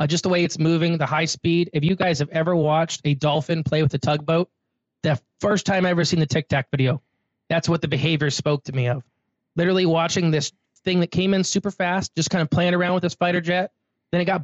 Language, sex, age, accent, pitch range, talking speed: English, male, 20-39, American, 145-175 Hz, 250 wpm